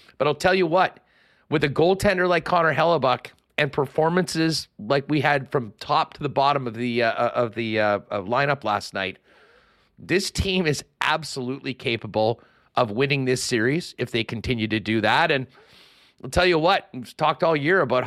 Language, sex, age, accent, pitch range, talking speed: English, male, 40-59, American, 125-170 Hz, 185 wpm